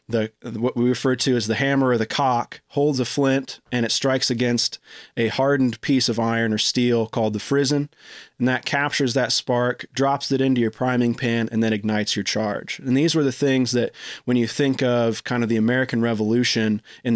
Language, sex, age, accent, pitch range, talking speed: English, male, 30-49, American, 110-130 Hz, 210 wpm